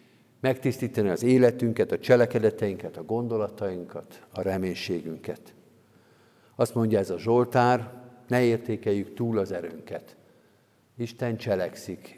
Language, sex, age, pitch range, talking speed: Hungarian, male, 50-69, 100-120 Hz, 105 wpm